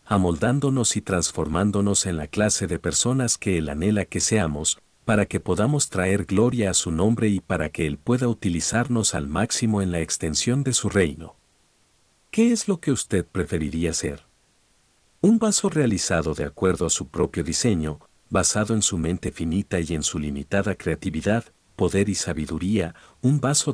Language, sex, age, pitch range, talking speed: Spanish, male, 50-69, 85-110 Hz, 165 wpm